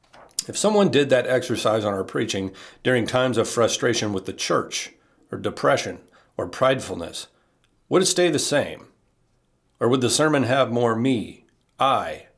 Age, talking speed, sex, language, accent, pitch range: 40-59, 155 wpm, male, English, American, 110-130 Hz